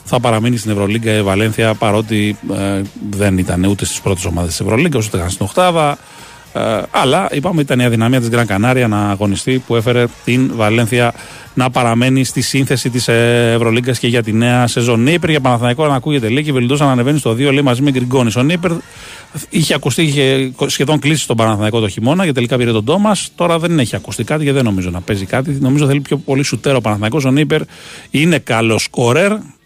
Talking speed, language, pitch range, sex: 195 wpm, Greek, 105-140 Hz, male